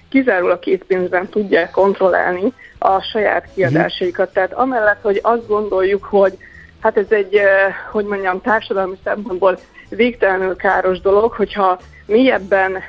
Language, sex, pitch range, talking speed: Hungarian, female, 190-220 Hz, 120 wpm